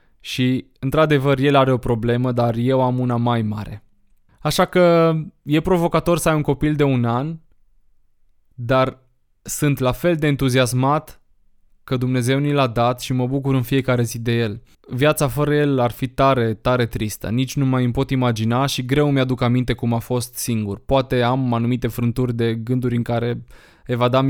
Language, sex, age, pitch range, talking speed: Romanian, male, 20-39, 120-140 Hz, 180 wpm